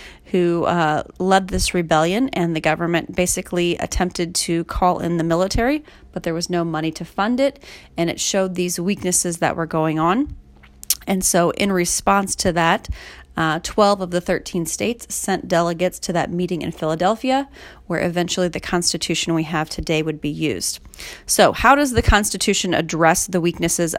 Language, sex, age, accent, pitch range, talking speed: English, female, 30-49, American, 165-190 Hz, 175 wpm